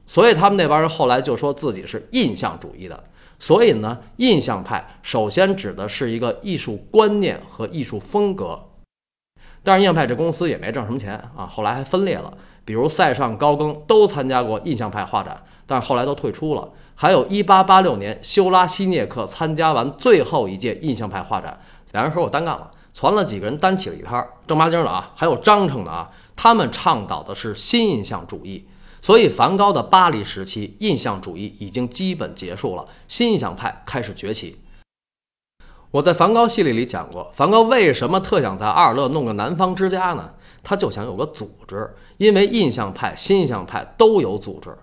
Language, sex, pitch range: Chinese, male, 130-200 Hz